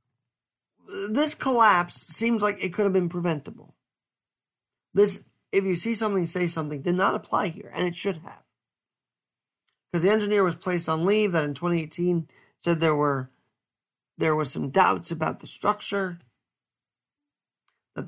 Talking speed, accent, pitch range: 150 wpm, American, 150-195 Hz